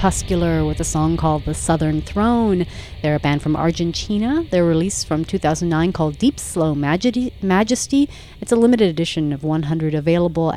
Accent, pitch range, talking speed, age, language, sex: American, 150-180 Hz, 155 wpm, 40-59, English, female